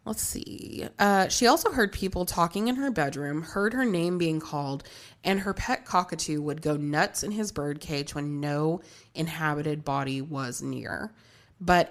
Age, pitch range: 20-39, 145-185 Hz